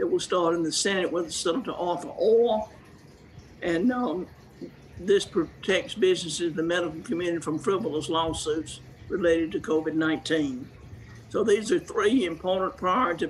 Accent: American